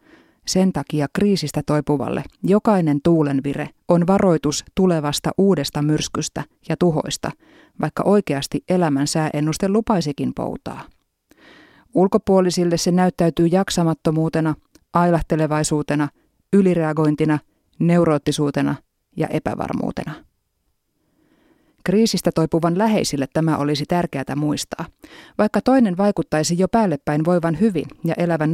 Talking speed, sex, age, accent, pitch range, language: 95 wpm, female, 30-49, native, 150-195 Hz, Finnish